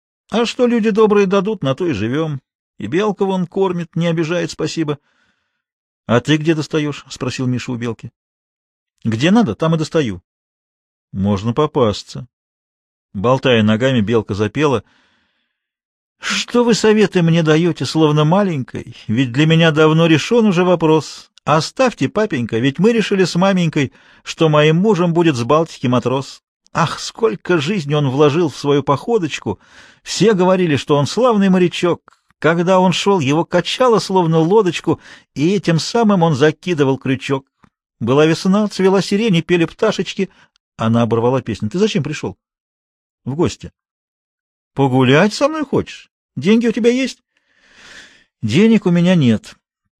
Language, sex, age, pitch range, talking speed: Russian, male, 40-59, 135-200 Hz, 140 wpm